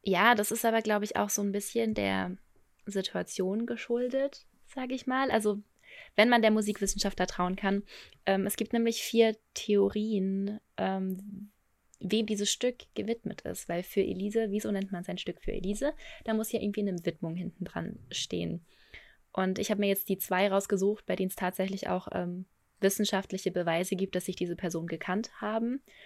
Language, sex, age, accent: German, female, 20-39, German